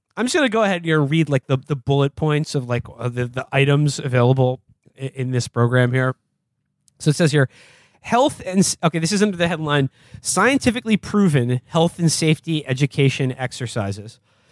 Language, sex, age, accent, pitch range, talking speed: English, male, 20-39, American, 130-175 Hz, 175 wpm